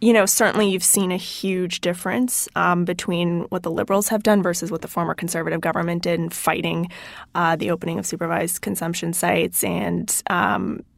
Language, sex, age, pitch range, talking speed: English, female, 20-39, 170-200 Hz, 180 wpm